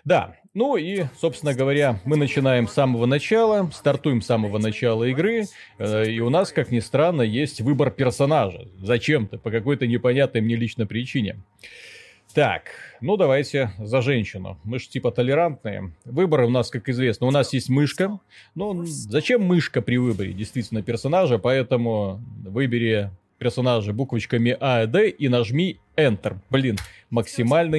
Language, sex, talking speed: Russian, male, 150 wpm